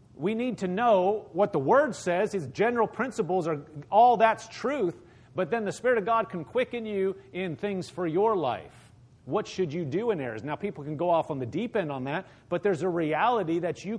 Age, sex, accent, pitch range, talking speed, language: 40-59, male, American, 150-205 Hz, 225 wpm, English